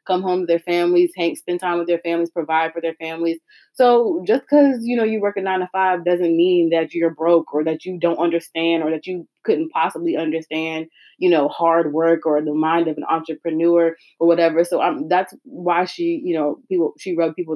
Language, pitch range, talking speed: English, 165-220 Hz, 220 wpm